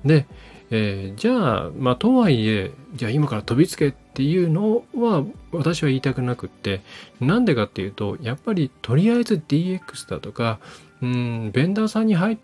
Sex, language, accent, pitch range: male, Japanese, native, 105-160 Hz